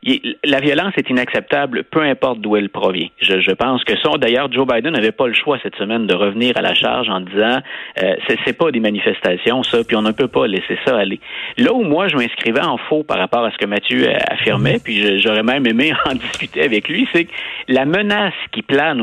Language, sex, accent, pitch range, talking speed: French, male, Canadian, 110-165 Hz, 235 wpm